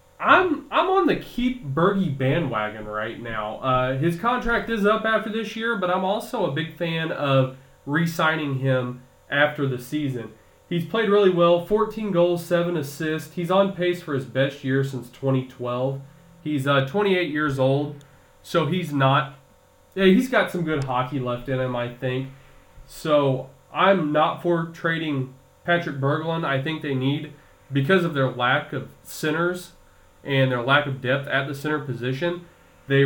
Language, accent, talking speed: English, American, 165 wpm